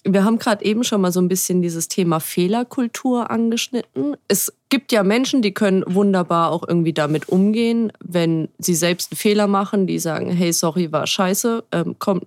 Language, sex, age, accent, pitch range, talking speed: German, female, 30-49, German, 160-205 Hz, 185 wpm